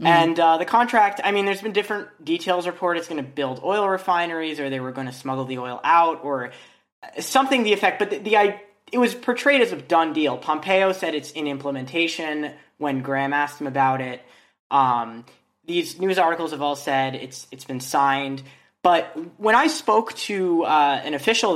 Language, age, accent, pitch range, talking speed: English, 20-39, American, 135-185 Hz, 195 wpm